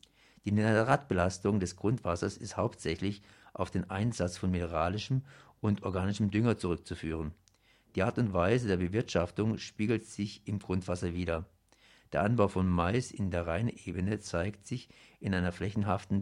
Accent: German